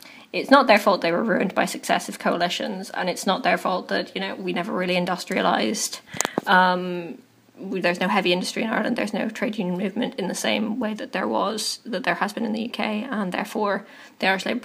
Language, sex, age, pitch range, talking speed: English, female, 20-39, 185-230 Hz, 215 wpm